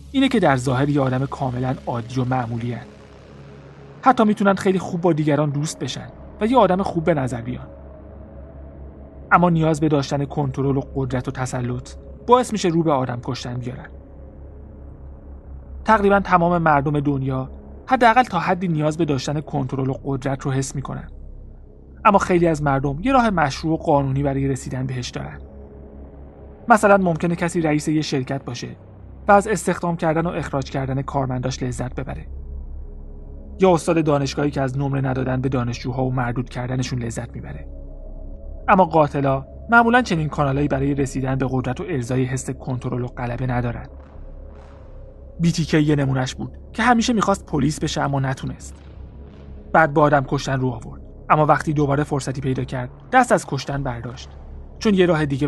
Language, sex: Persian, male